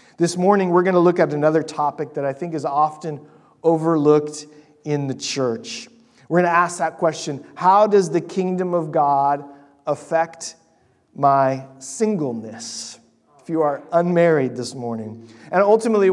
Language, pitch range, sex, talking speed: English, 140-180 Hz, male, 155 wpm